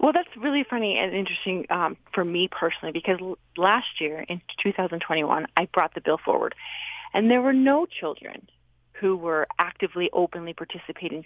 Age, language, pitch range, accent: 30-49, English, 170-245 Hz, American